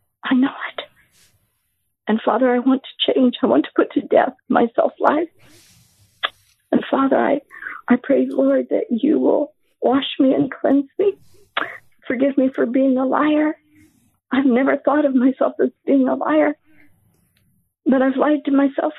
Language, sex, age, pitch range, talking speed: English, female, 50-69, 255-300 Hz, 160 wpm